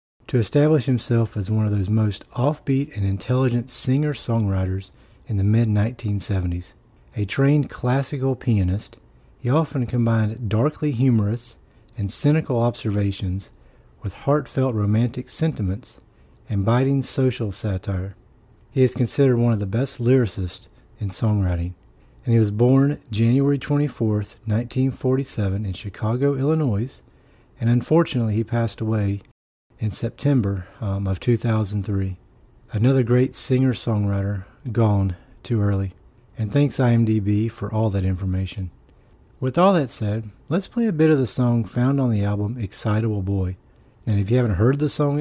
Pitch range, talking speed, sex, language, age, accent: 100-130 Hz, 135 wpm, male, English, 40-59, American